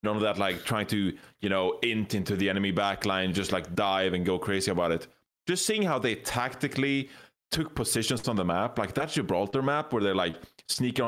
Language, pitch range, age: English, 100-145 Hz, 30-49